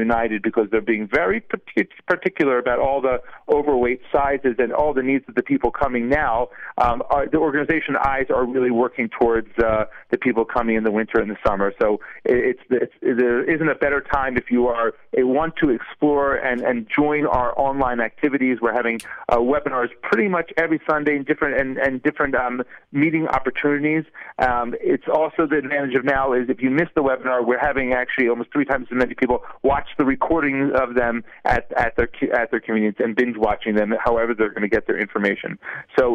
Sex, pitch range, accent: male, 120-145 Hz, American